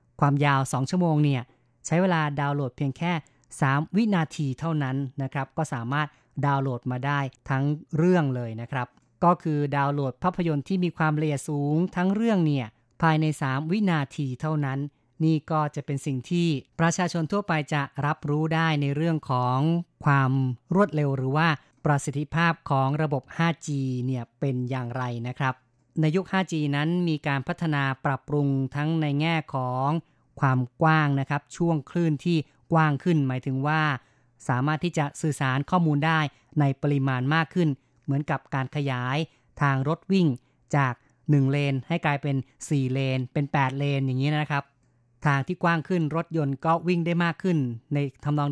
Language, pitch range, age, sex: Thai, 135-160 Hz, 30-49, female